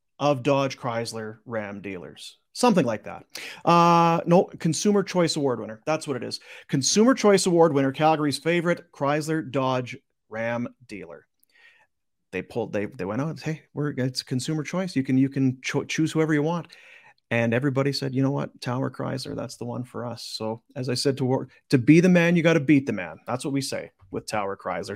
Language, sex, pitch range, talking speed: English, male, 130-170 Hz, 200 wpm